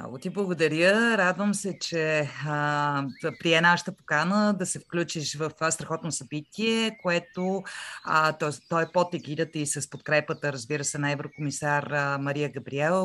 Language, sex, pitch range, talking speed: Bulgarian, female, 150-175 Hz, 145 wpm